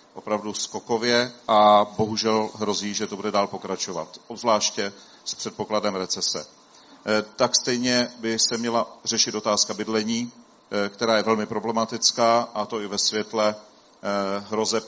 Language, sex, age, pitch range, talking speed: Czech, male, 40-59, 105-115 Hz, 130 wpm